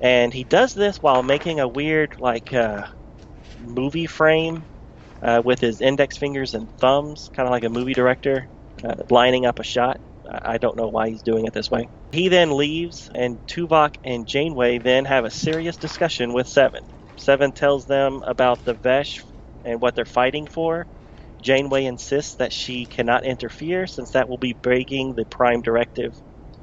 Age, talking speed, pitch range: 30-49, 175 wpm, 120-145 Hz